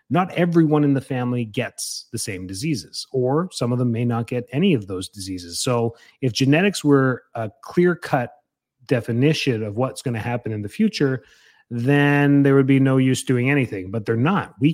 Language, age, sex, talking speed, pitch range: English, 30-49, male, 195 wpm, 115-145 Hz